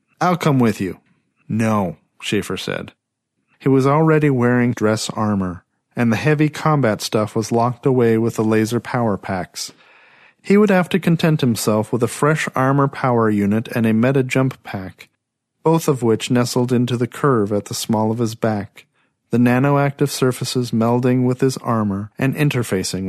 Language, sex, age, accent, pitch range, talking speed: English, male, 40-59, American, 110-140 Hz, 165 wpm